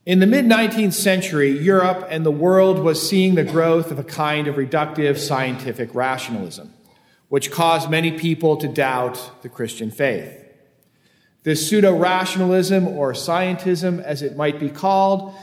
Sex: male